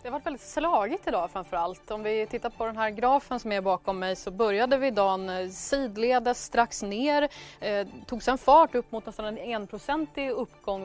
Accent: Swedish